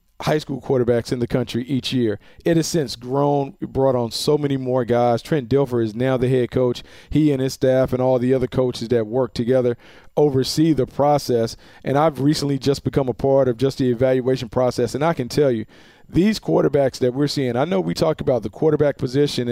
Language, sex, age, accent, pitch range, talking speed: English, male, 40-59, American, 120-145 Hz, 215 wpm